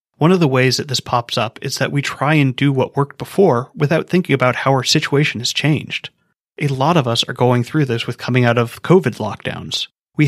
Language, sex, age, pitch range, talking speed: English, male, 30-49, 125-155 Hz, 235 wpm